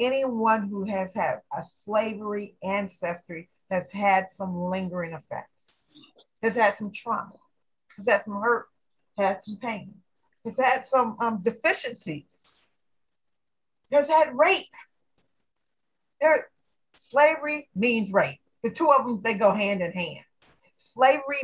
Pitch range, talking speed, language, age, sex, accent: 195-265 Hz, 125 wpm, English, 40-59, female, American